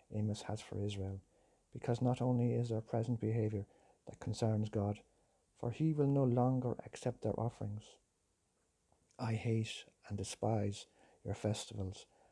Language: English